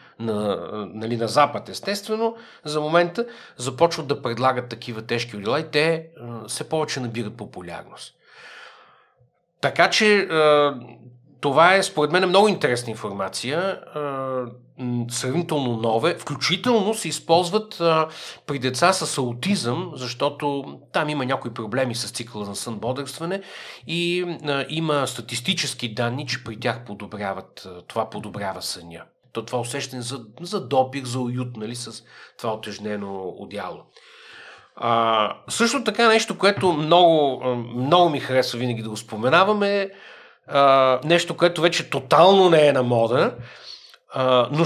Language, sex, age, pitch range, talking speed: Bulgarian, male, 50-69, 120-180 Hz, 120 wpm